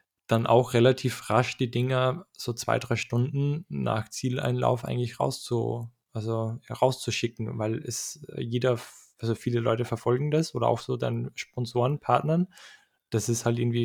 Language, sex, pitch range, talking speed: German, male, 115-130 Hz, 150 wpm